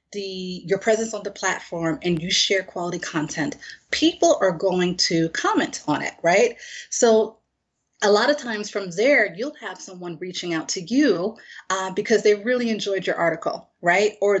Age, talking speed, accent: 30-49, 175 wpm, American